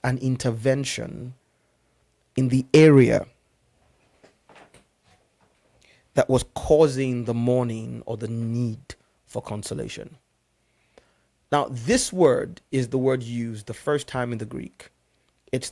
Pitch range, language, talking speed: 120-155 Hz, English, 110 wpm